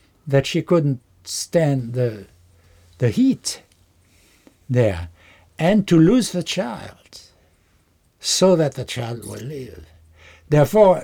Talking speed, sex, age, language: 110 wpm, male, 60-79, English